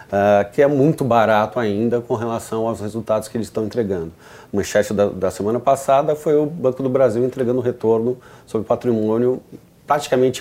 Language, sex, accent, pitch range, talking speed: Portuguese, male, Brazilian, 110-130 Hz, 175 wpm